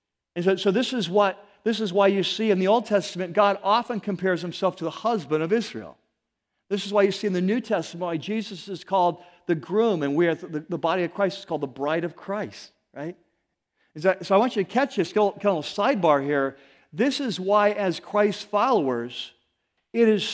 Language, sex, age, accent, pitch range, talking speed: English, male, 50-69, American, 180-225 Hz, 225 wpm